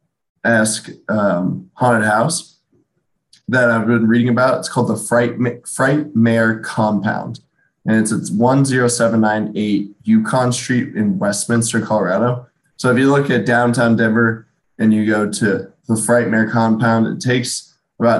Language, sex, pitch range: English, male, 110-125 Hz